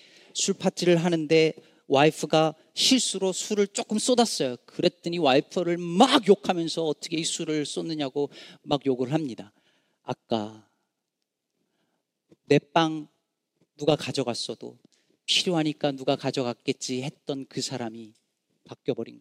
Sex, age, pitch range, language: male, 40-59, 120-160 Hz, Korean